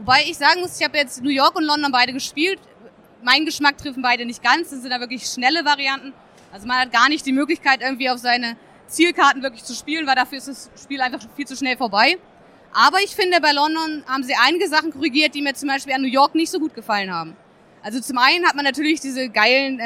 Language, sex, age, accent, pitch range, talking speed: German, female, 20-39, German, 245-295 Hz, 240 wpm